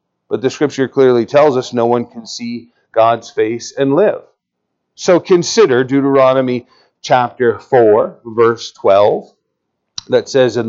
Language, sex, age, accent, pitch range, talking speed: English, male, 40-59, American, 115-145 Hz, 135 wpm